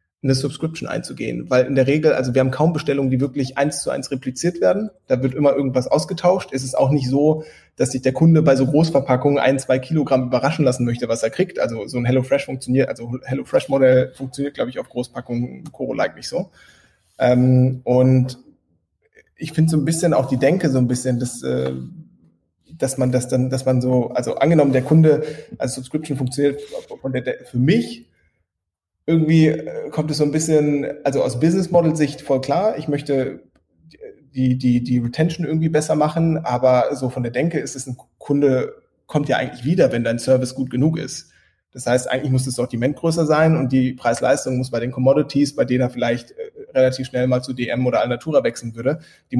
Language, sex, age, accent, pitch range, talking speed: German, male, 20-39, German, 125-150 Hz, 200 wpm